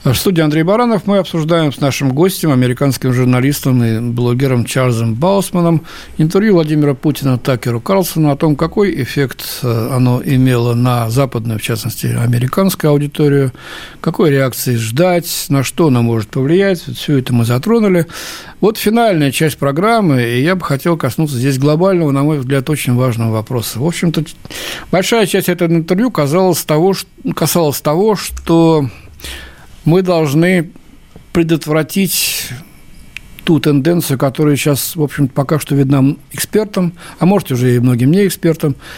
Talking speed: 140 wpm